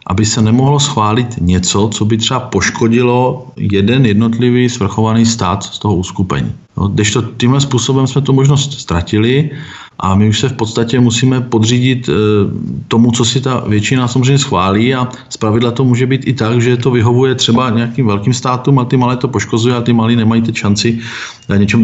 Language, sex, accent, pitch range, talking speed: Czech, male, native, 105-125 Hz, 185 wpm